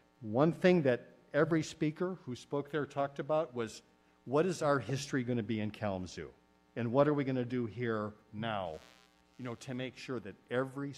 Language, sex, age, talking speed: English, male, 50-69, 195 wpm